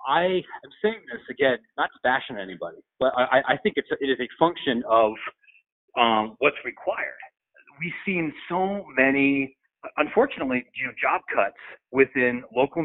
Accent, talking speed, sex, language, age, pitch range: American, 160 wpm, male, English, 40-59, 130-215 Hz